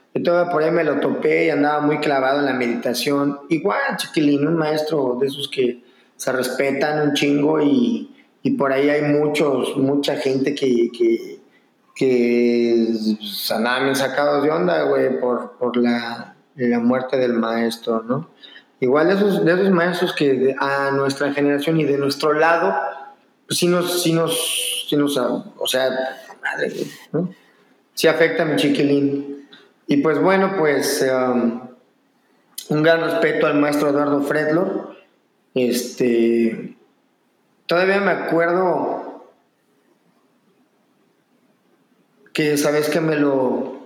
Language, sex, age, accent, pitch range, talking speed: Spanish, male, 30-49, Mexican, 130-155 Hz, 145 wpm